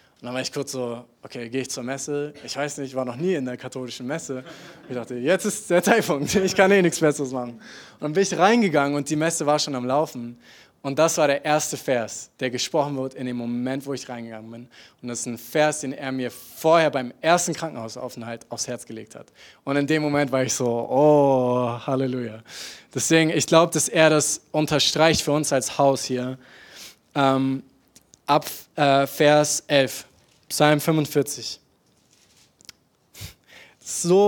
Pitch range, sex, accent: 125-155 Hz, male, German